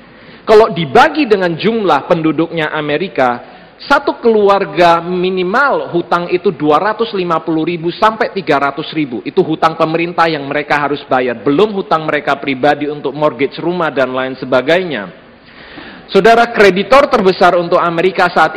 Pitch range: 150-190 Hz